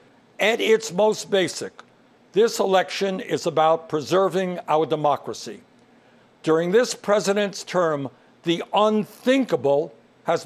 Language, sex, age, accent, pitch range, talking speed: English, male, 60-79, American, 180-220 Hz, 105 wpm